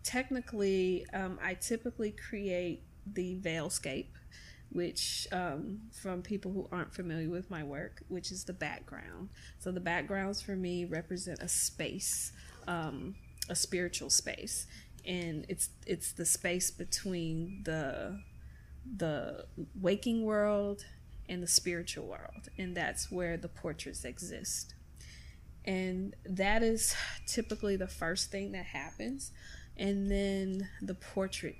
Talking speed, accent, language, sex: 125 wpm, American, English, female